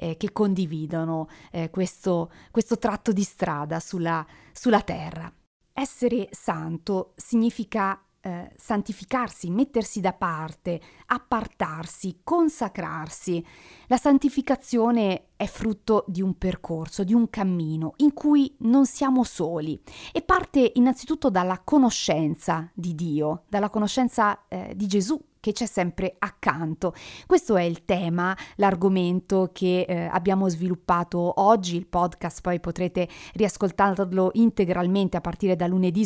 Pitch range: 175-215 Hz